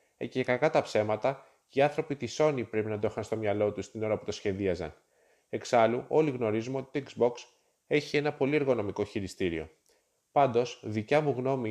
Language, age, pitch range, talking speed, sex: Greek, 20-39, 110-140 Hz, 180 wpm, male